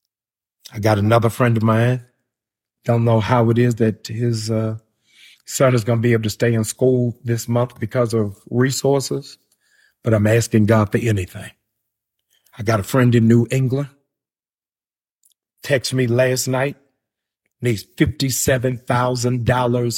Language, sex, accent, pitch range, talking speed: English, male, American, 110-125 Hz, 140 wpm